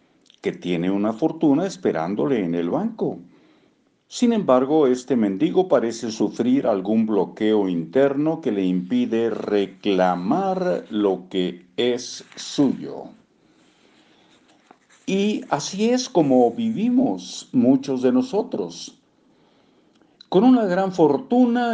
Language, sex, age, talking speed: Spanish, male, 50-69, 100 wpm